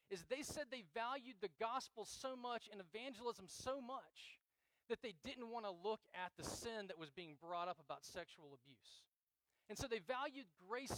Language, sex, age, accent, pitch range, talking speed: English, male, 40-59, American, 150-235 Hz, 190 wpm